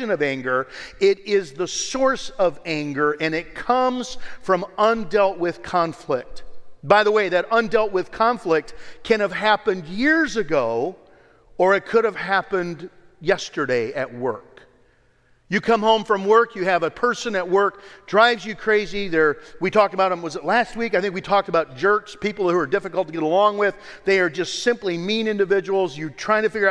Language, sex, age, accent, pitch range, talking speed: English, male, 50-69, American, 180-225 Hz, 185 wpm